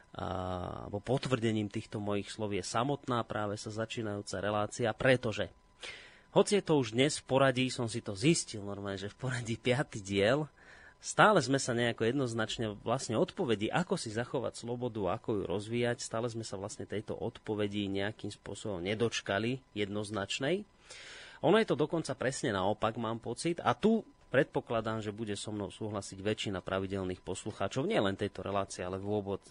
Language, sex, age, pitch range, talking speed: Slovak, male, 30-49, 100-125 Hz, 160 wpm